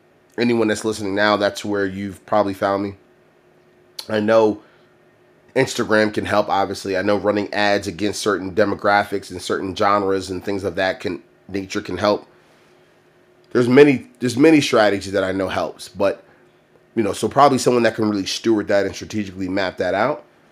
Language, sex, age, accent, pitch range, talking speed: English, male, 30-49, American, 95-115 Hz, 175 wpm